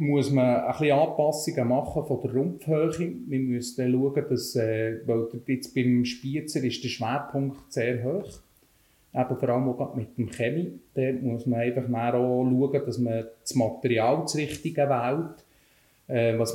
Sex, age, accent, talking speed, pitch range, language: male, 30-49, Austrian, 165 wpm, 120-145 Hz, German